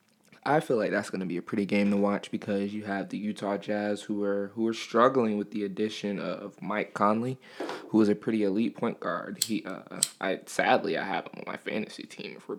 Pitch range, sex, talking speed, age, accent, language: 100-115 Hz, male, 235 wpm, 20-39, American, English